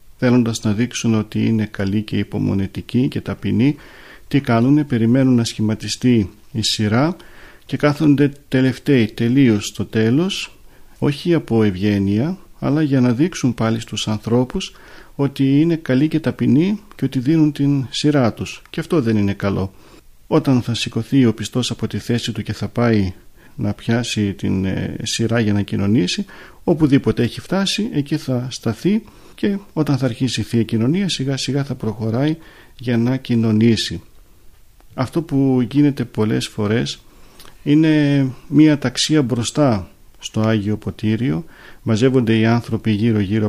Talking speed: 145 wpm